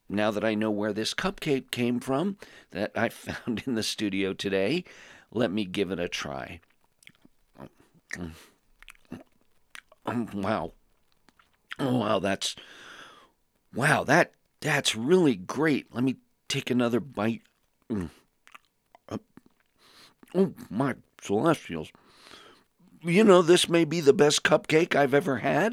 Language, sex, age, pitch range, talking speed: English, male, 50-69, 100-170 Hz, 125 wpm